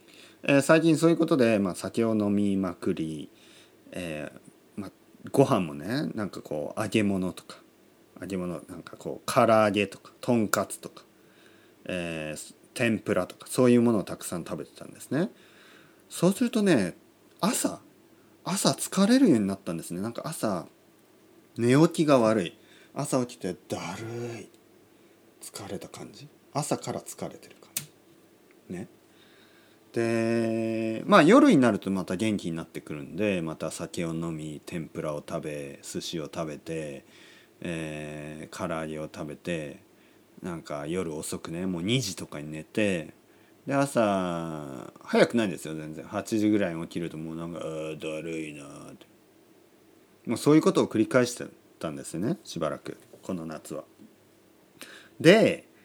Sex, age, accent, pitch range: male, 40-59, native, 80-120 Hz